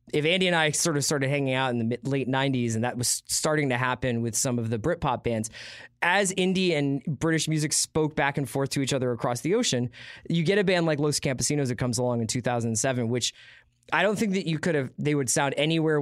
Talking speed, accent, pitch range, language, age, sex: 240 wpm, American, 120-145 Hz, English, 20-39, male